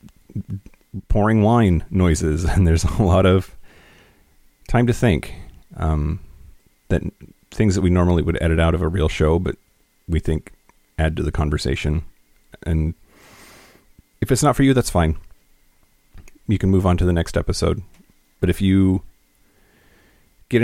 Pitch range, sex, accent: 80-95 Hz, male, American